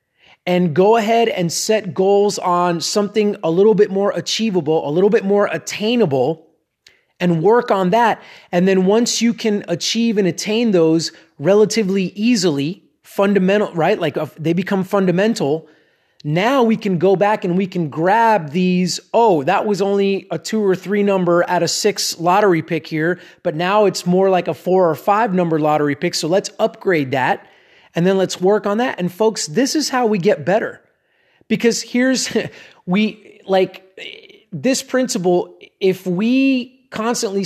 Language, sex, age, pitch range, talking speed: English, male, 30-49, 175-215 Hz, 165 wpm